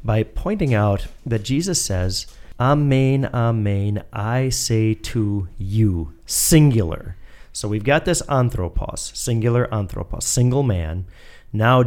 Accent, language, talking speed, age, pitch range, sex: American, English, 115 wpm, 40-59, 100-130 Hz, male